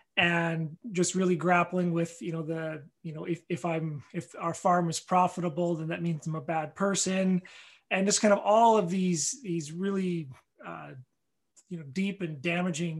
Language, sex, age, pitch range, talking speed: English, male, 30-49, 170-200 Hz, 185 wpm